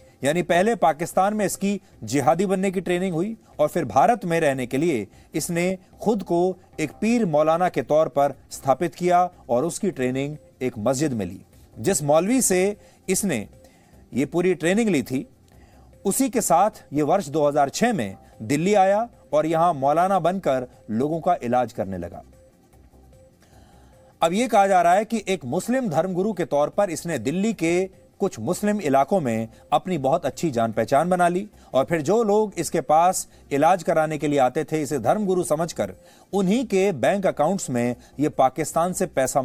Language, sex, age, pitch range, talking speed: English, male, 40-59, 135-195 Hz, 170 wpm